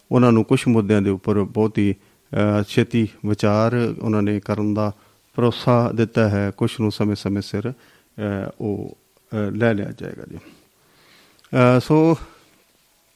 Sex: male